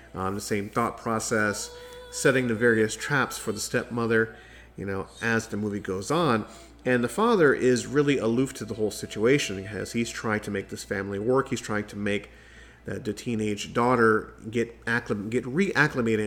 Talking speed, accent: 180 wpm, American